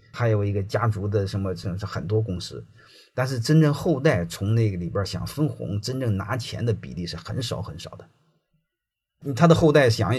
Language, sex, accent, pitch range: Chinese, male, native, 105-140 Hz